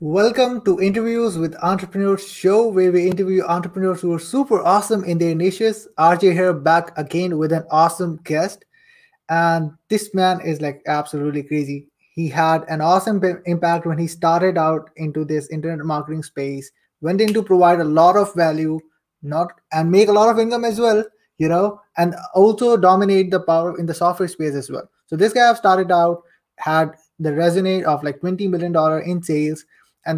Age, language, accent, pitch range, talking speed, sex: 20-39, English, Indian, 160-195 Hz, 185 wpm, male